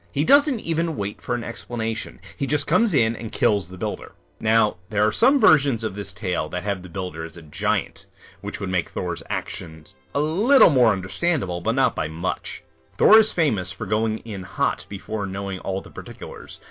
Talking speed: 200 wpm